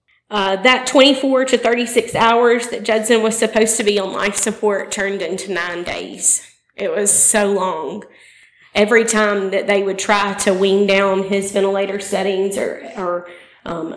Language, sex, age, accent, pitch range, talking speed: English, female, 30-49, American, 195-215 Hz, 165 wpm